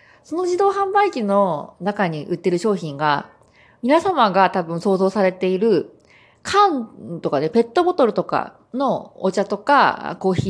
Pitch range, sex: 175-285 Hz, female